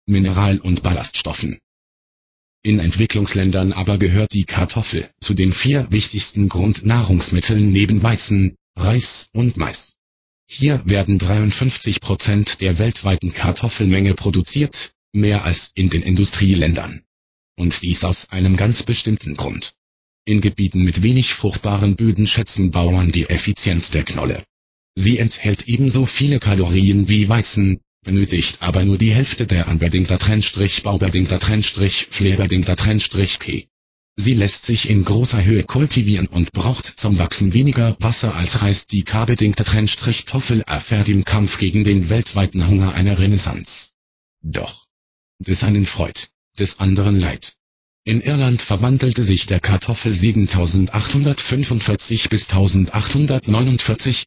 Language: German